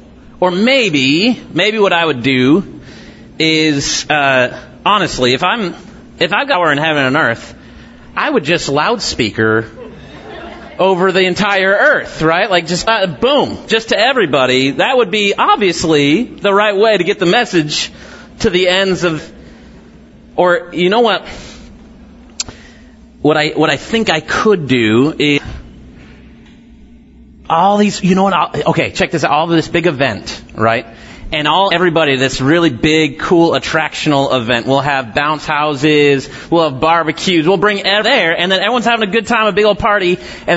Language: English